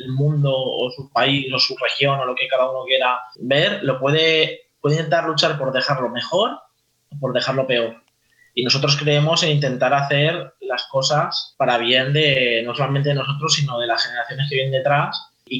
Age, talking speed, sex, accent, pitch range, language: 20-39, 190 wpm, male, Spanish, 130-160 Hz, Spanish